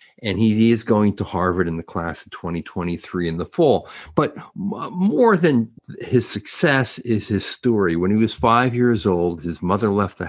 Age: 50-69